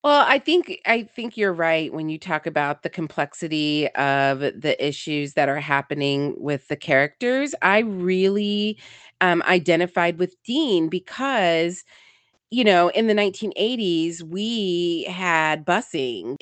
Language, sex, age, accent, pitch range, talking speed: English, female, 30-49, American, 155-210 Hz, 135 wpm